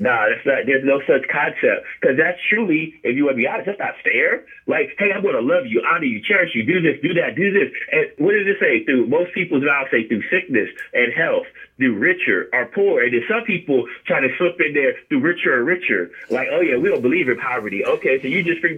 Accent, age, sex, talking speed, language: American, 30-49, male, 250 wpm, English